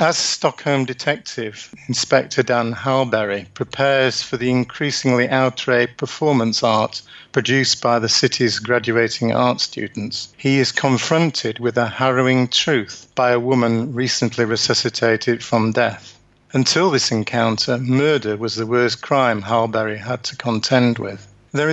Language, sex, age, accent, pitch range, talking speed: English, male, 50-69, British, 115-130 Hz, 135 wpm